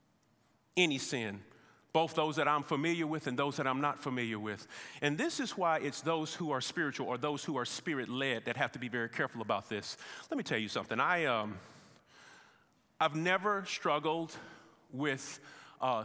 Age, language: 40-59, English